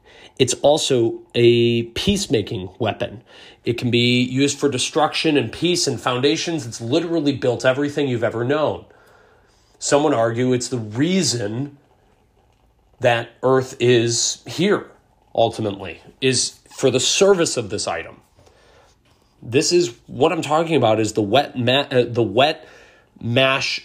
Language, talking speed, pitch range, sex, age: English, 135 wpm, 115-145 Hz, male, 30-49